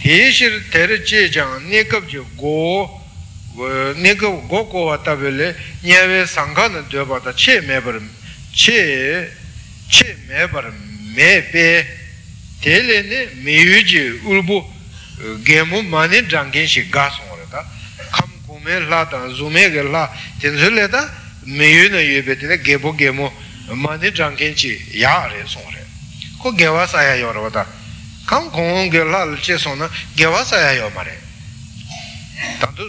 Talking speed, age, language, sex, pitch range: 50 wpm, 60-79, Italian, male, 125-175 Hz